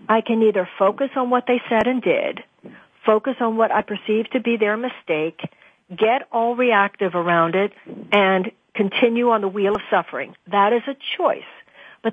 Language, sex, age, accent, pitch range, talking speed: English, female, 50-69, American, 185-230 Hz, 180 wpm